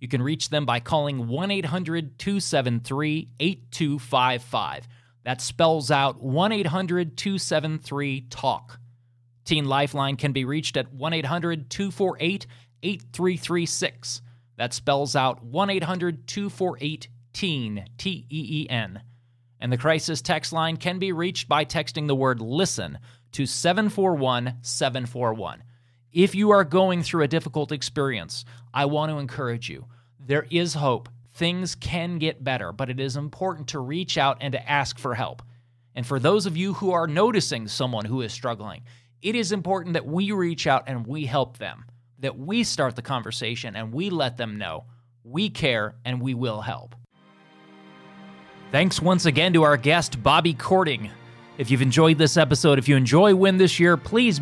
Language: English